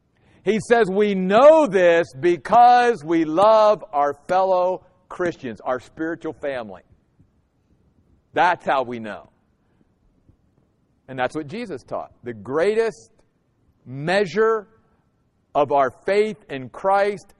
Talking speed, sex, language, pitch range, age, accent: 105 wpm, male, English, 140-215 Hz, 50-69, American